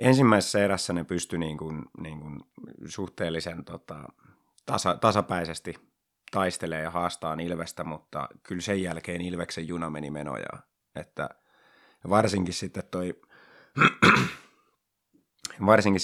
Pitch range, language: 85-95 Hz, Finnish